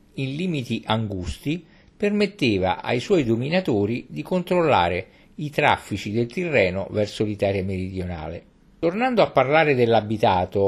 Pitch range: 100-140 Hz